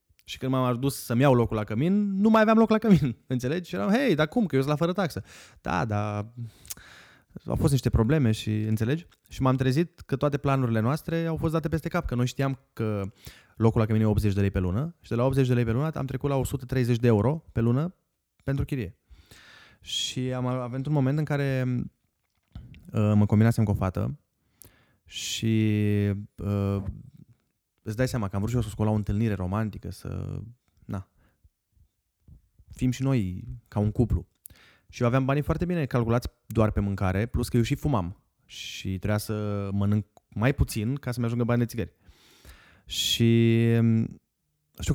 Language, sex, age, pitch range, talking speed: Romanian, male, 20-39, 105-135 Hz, 190 wpm